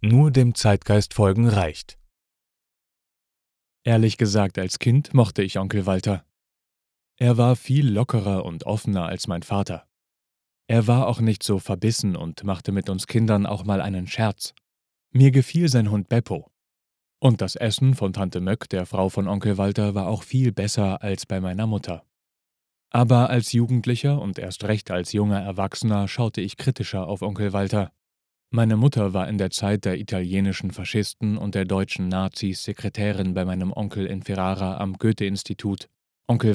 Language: German